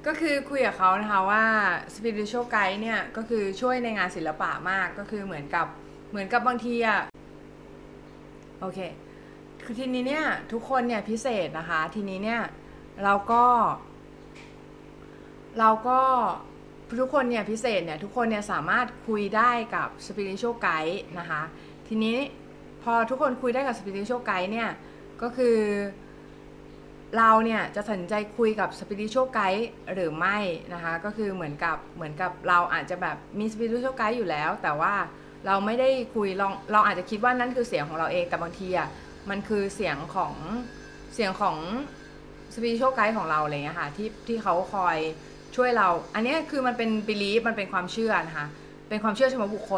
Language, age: Thai, 20-39